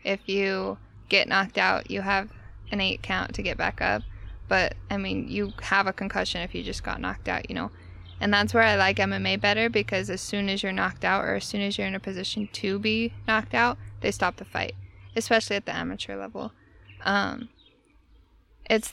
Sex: female